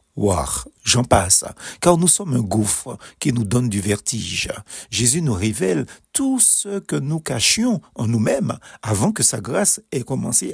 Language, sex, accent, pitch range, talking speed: French, male, French, 110-155 Hz, 165 wpm